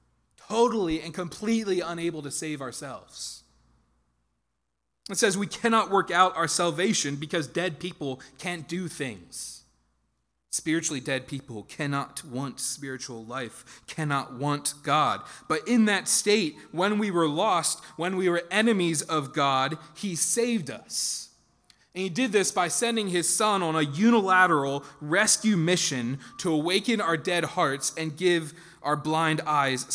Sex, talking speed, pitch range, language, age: male, 140 wpm, 140-180 Hz, English, 20-39